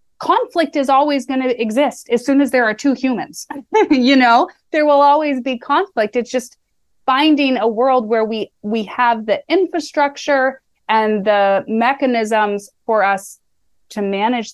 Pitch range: 205-260 Hz